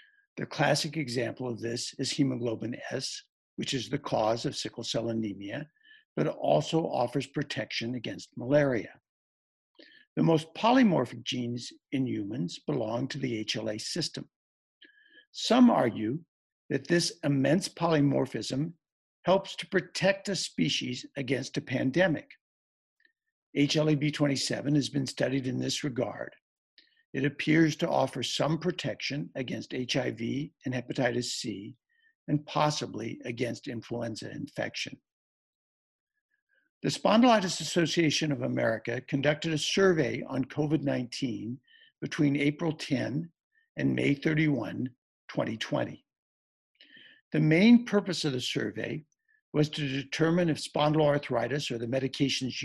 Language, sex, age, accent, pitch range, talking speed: English, male, 60-79, American, 125-175 Hz, 115 wpm